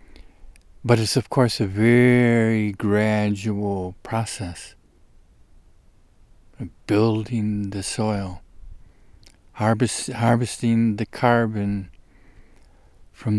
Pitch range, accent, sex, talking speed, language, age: 100-120 Hz, American, male, 70 wpm, English, 50-69